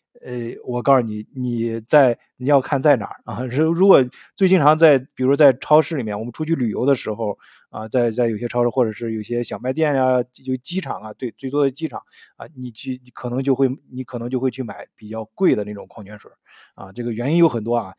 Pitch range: 120-150 Hz